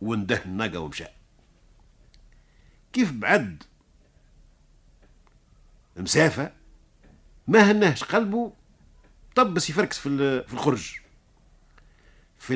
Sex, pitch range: male, 95-155 Hz